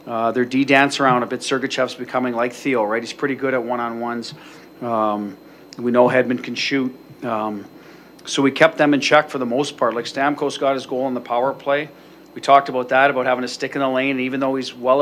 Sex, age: male, 40-59